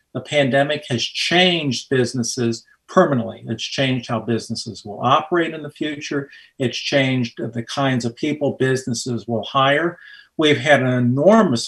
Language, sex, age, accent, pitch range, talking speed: English, male, 50-69, American, 120-145 Hz, 145 wpm